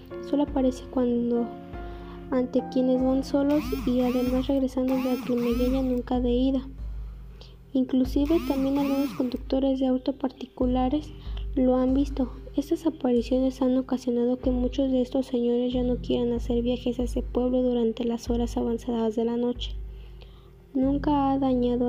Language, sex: Spanish, female